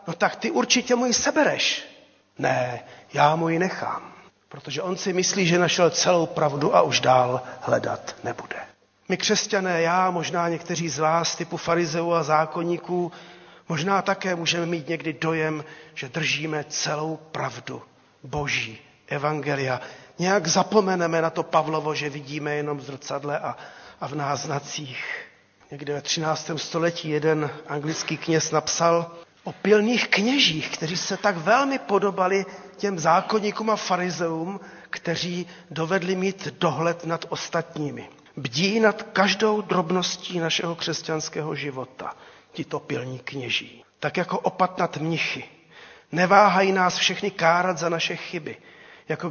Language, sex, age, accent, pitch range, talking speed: Czech, male, 40-59, native, 155-190 Hz, 135 wpm